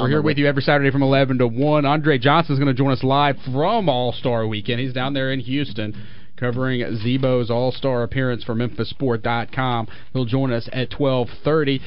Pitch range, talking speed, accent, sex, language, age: 120-150 Hz, 185 wpm, American, male, English, 30-49